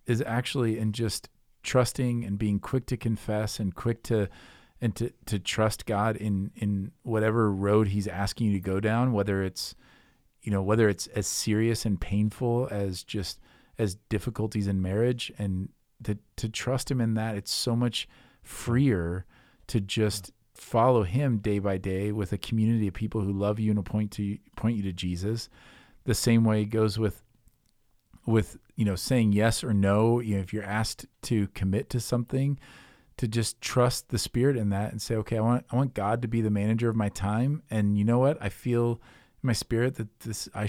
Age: 40-59